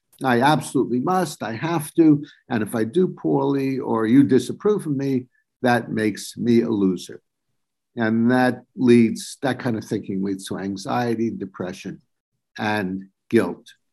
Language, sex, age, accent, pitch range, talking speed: English, male, 50-69, American, 110-140 Hz, 145 wpm